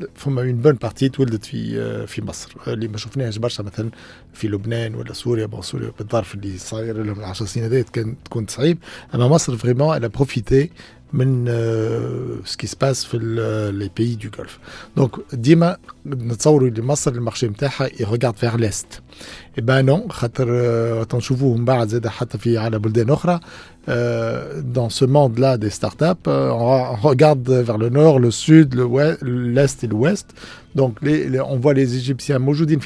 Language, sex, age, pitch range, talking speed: Arabic, male, 50-69, 115-145 Hz, 160 wpm